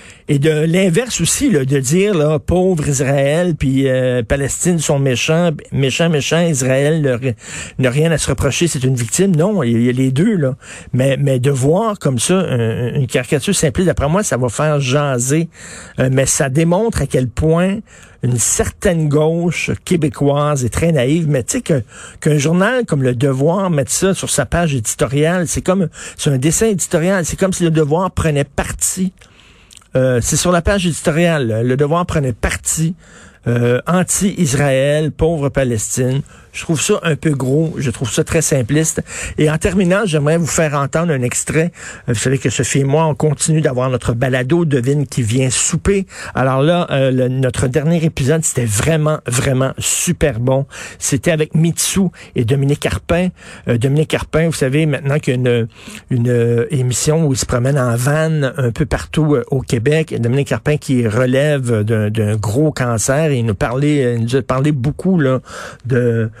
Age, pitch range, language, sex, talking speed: 50-69, 130-165 Hz, French, male, 185 wpm